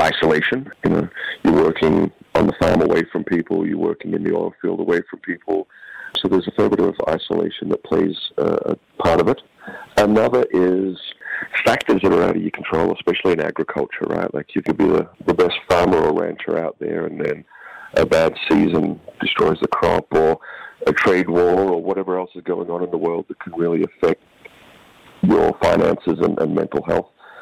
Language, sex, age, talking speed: English, male, 50-69, 195 wpm